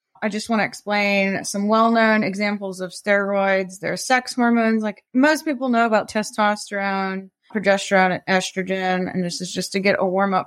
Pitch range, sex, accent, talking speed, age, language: 190-240 Hz, female, American, 180 wpm, 20-39, English